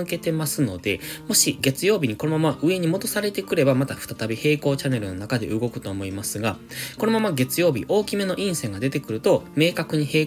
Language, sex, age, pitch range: Japanese, male, 20-39, 115-160 Hz